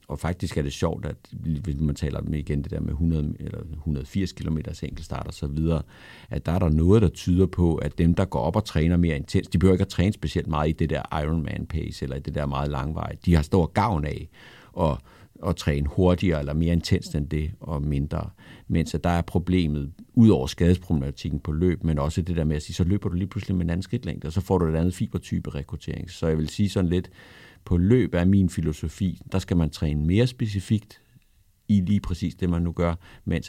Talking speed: 235 wpm